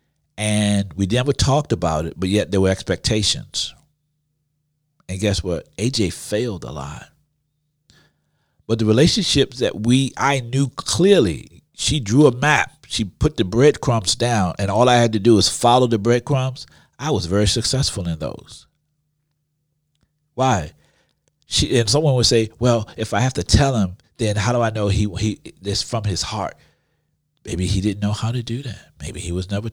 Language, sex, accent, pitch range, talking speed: English, male, American, 95-140 Hz, 175 wpm